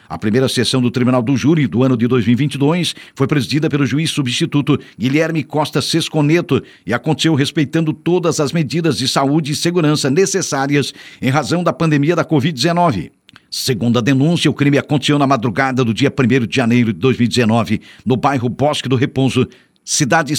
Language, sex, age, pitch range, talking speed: Portuguese, male, 60-79, 130-160 Hz, 170 wpm